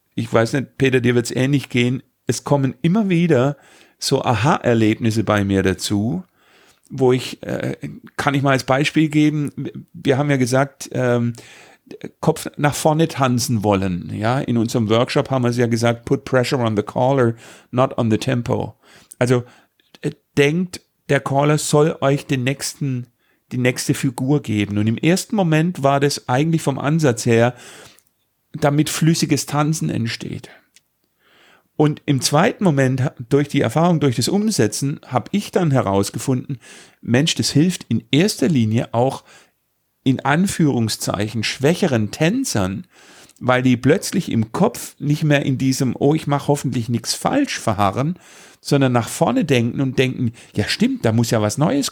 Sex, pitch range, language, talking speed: male, 115-145 Hz, German, 155 wpm